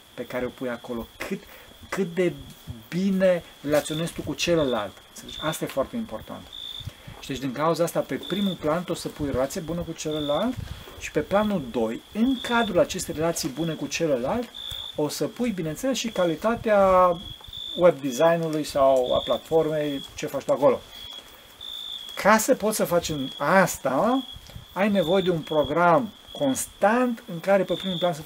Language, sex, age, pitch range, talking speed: Romanian, male, 40-59, 150-215 Hz, 160 wpm